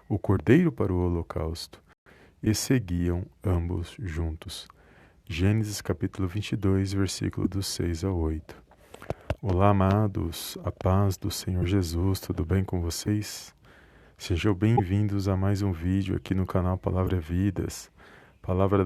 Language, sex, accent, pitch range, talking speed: Portuguese, male, Brazilian, 90-105 Hz, 125 wpm